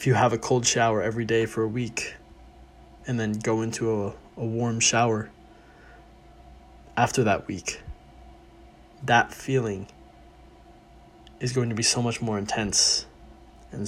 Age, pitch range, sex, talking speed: 20-39, 70-115 Hz, male, 145 wpm